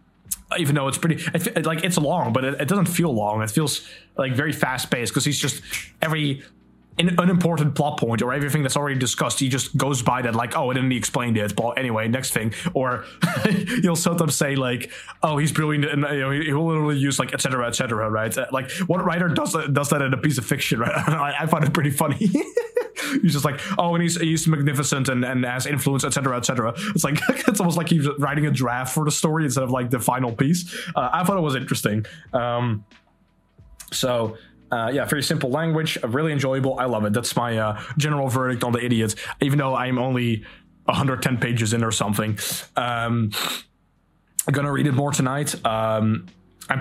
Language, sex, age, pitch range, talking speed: English, male, 20-39, 120-150 Hz, 210 wpm